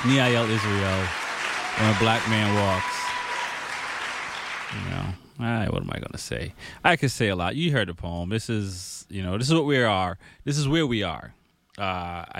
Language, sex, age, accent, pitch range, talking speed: English, male, 30-49, American, 90-110 Hz, 195 wpm